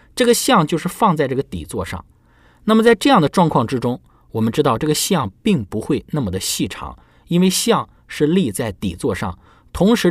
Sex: male